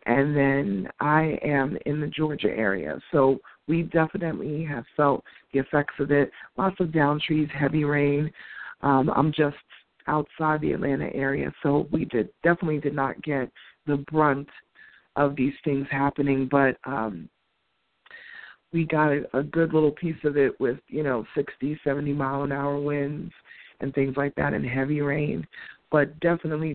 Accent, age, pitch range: American, 40-59, 135-155 Hz